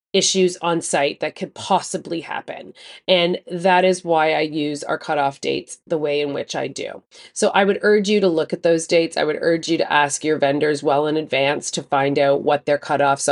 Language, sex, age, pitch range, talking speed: English, female, 30-49, 145-190 Hz, 220 wpm